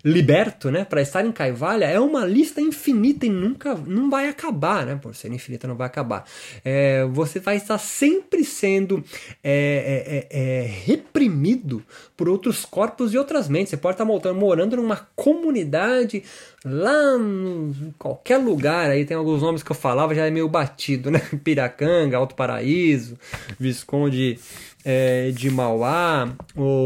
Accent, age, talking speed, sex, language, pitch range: Brazilian, 20-39, 155 wpm, male, Portuguese, 135-210 Hz